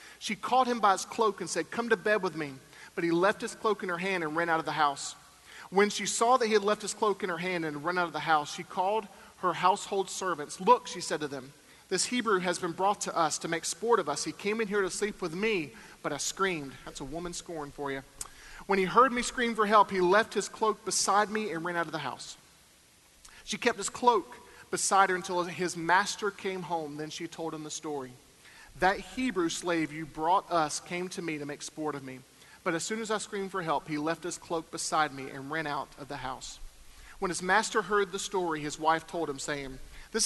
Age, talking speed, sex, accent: 40-59, 245 wpm, male, American